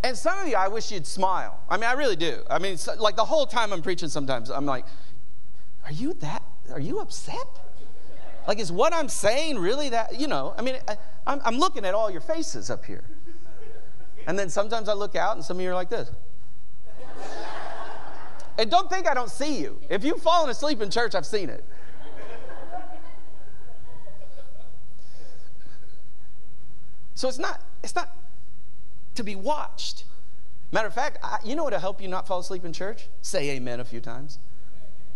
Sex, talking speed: male, 180 wpm